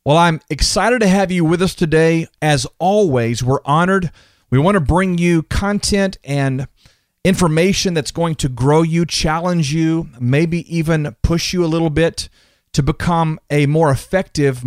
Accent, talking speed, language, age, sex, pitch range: American, 165 wpm, English, 40-59, male, 130-170 Hz